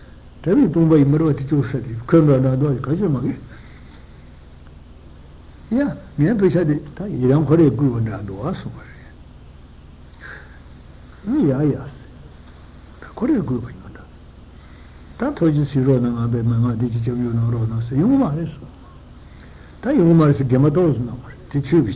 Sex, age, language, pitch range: male, 60-79, Italian, 100-135 Hz